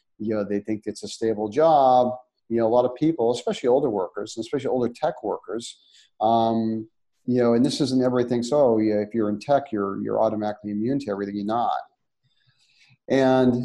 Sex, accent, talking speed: male, American, 190 wpm